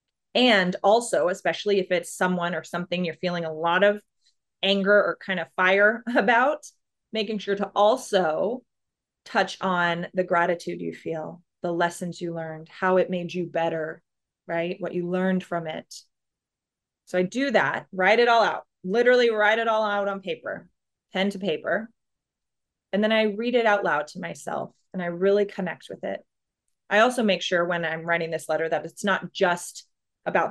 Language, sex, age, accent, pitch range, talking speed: English, female, 20-39, American, 170-205 Hz, 180 wpm